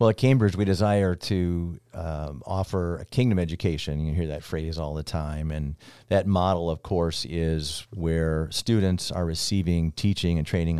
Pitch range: 80-105 Hz